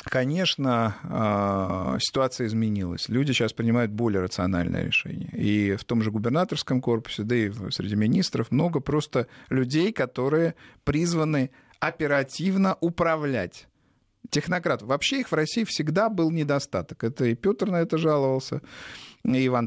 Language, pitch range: Russian, 115-155 Hz